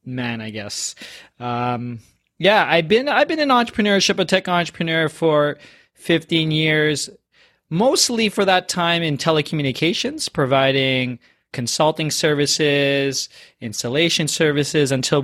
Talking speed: 115 wpm